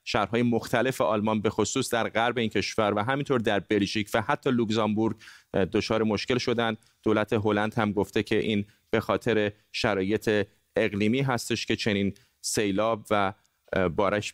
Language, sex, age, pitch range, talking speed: Persian, male, 30-49, 100-125 Hz, 145 wpm